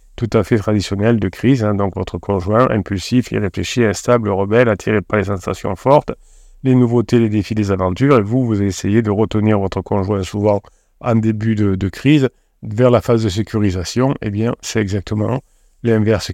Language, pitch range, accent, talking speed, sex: French, 100-120 Hz, French, 185 wpm, male